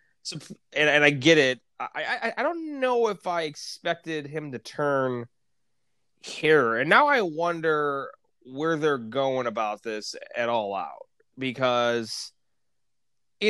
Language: English